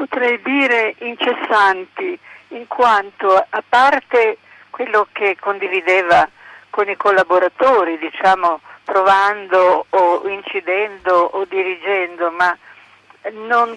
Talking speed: 90 wpm